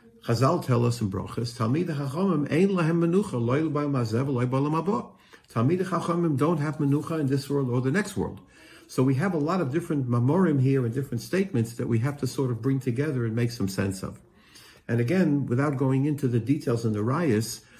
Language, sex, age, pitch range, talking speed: English, male, 60-79, 120-155 Hz, 205 wpm